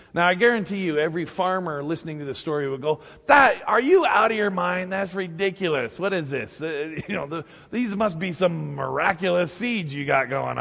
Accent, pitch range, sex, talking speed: American, 130-165 Hz, male, 210 wpm